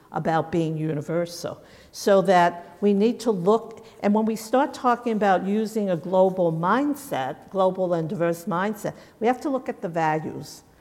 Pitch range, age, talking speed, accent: 180-245 Hz, 50-69, 165 wpm, American